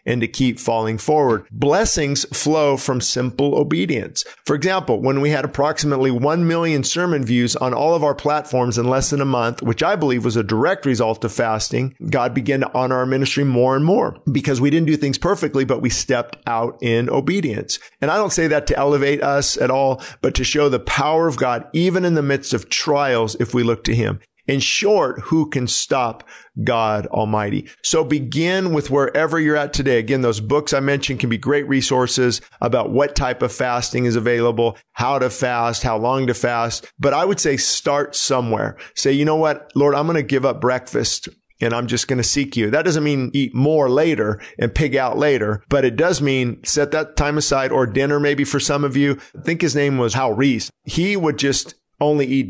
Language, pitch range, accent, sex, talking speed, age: English, 120-145 Hz, American, male, 215 wpm, 50-69